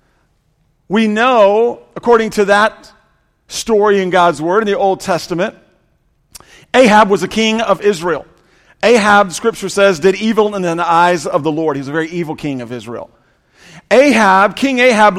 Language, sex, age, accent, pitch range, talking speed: English, male, 40-59, American, 190-240 Hz, 160 wpm